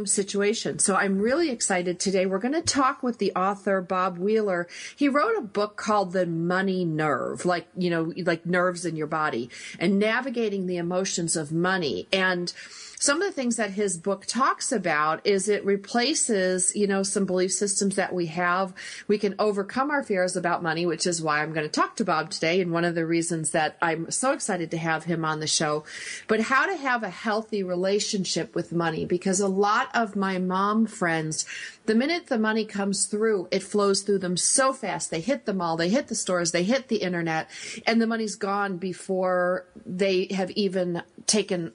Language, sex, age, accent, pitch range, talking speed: English, female, 40-59, American, 175-210 Hz, 200 wpm